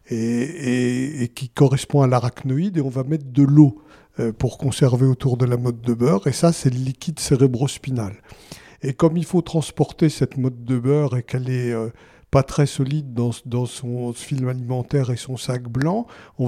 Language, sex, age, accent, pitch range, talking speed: French, male, 50-69, French, 125-145 Hz, 195 wpm